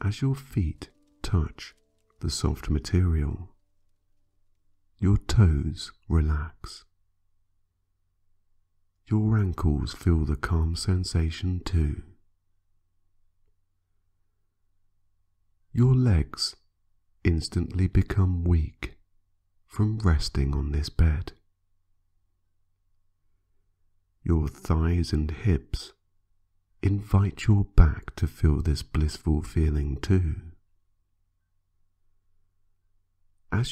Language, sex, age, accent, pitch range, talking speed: English, male, 50-69, British, 85-90 Hz, 75 wpm